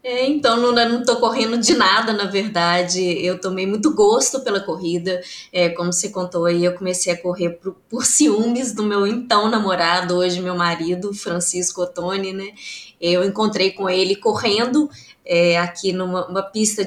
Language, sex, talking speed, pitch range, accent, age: Portuguese, female, 175 wpm, 180-230 Hz, Brazilian, 20-39